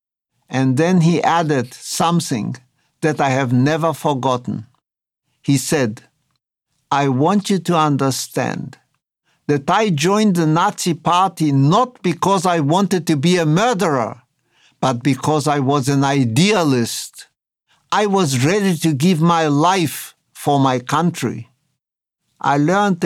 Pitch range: 140-180 Hz